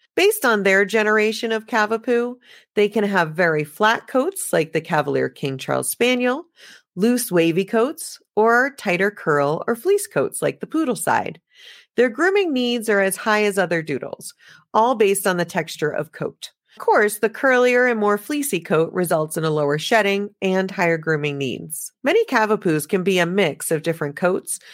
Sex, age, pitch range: female, 40-59, 165-235 Hz